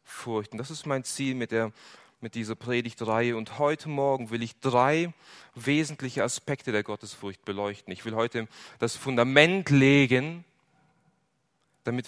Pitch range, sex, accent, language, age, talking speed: 115-150 Hz, male, German, German, 30-49, 130 wpm